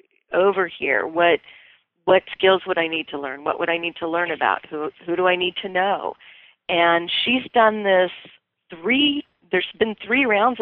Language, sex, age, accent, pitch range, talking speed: English, female, 40-59, American, 155-190 Hz, 185 wpm